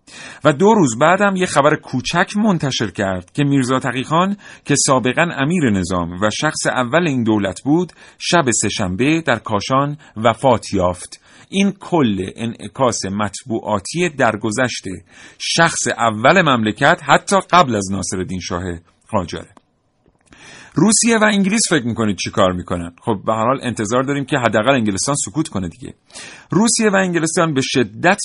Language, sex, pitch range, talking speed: Persian, male, 110-155 Hz, 140 wpm